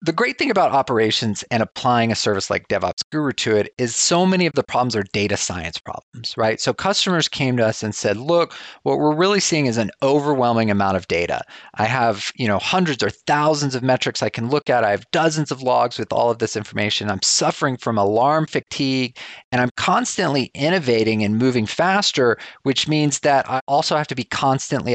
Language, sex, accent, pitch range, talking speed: English, male, American, 105-145 Hz, 205 wpm